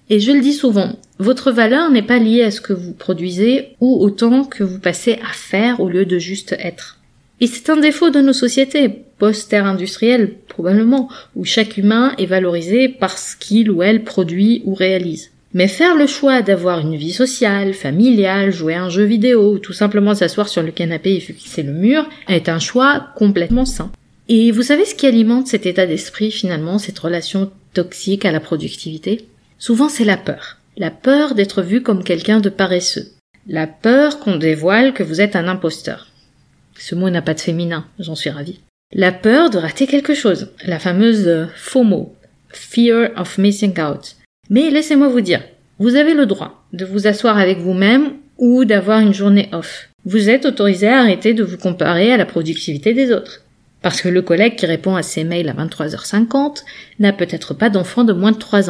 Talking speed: 195 wpm